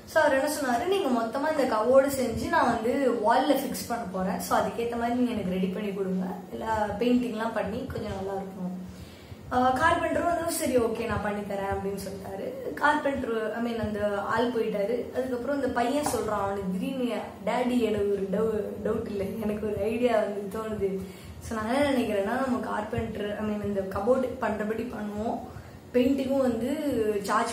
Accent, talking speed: native, 55 wpm